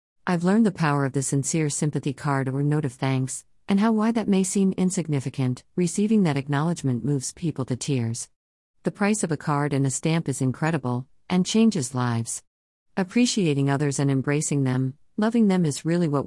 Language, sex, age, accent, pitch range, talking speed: English, female, 50-69, American, 130-180 Hz, 185 wpm